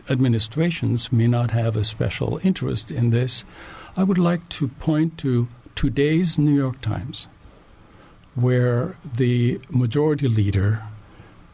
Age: 60-79